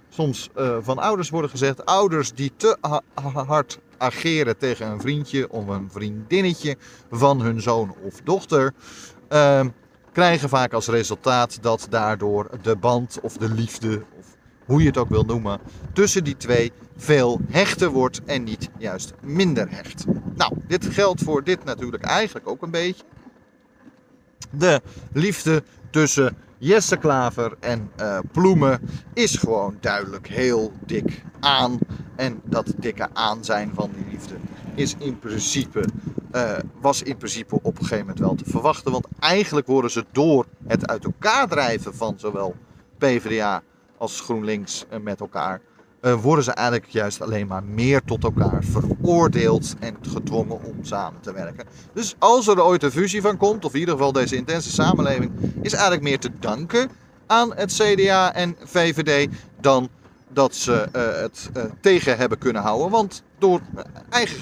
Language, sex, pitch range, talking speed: Dutch, male, 115-165 Hz, 155 wpm